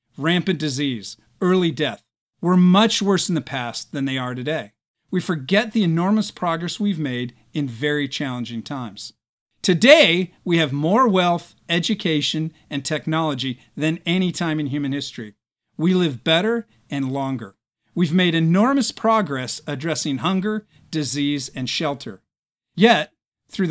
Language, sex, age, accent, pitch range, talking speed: English, male, 50-69, American, 135-190 Hz, 140 wpm